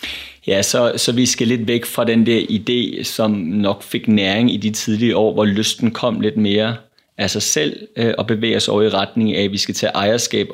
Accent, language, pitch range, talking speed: native, Danish, 105-120 Hz, 220 wpm